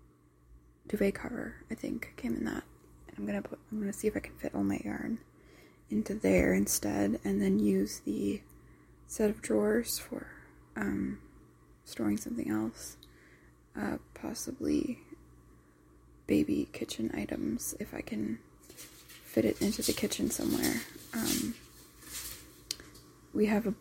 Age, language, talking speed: 20-39, English, 135 wpm